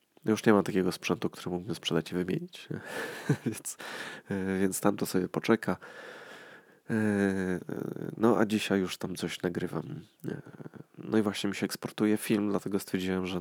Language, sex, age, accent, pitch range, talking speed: Polish, male, 20-39, native, 90-105 Hz, 150 wpm